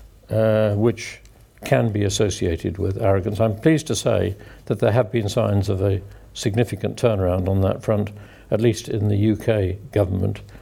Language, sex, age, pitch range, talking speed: English, male, 60-79, 105-130 Hz, 165 wpm